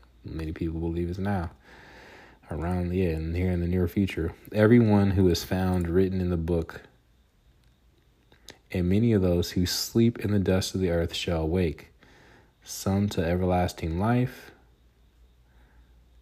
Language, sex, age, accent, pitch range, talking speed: English, male, 30-49, American, 65-95 Hz, 145 wpm